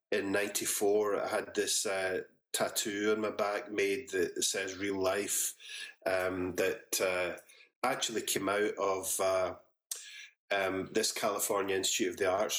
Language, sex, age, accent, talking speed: English, male, 30-49, British, 145 wpm